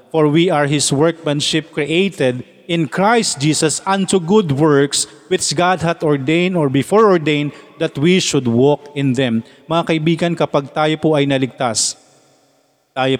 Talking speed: 150 wpm